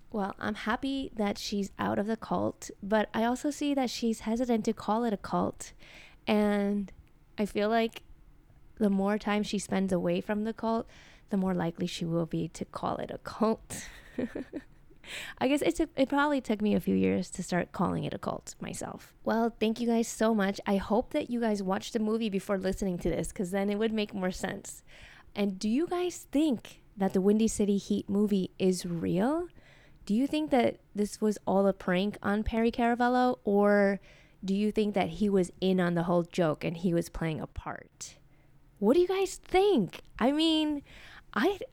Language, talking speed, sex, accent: English, 200 wpm, female, American